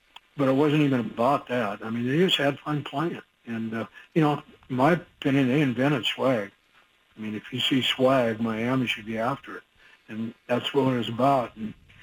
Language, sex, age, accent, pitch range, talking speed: English, male, 60-79, American, 115-140 Hz, 210 wpm